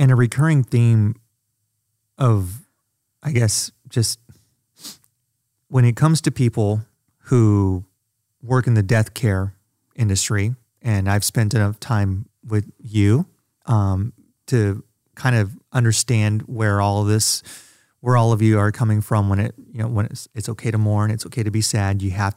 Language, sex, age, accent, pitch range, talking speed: English, male, 30-49, American, 100-120 Hz, 160 wpm